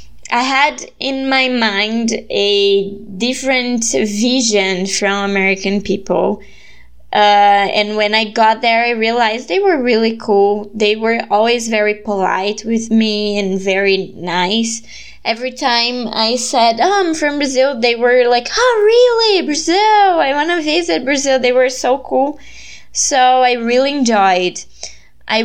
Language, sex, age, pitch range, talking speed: Portuguese, female, 20-39, 205-255 Hz, 140 wpm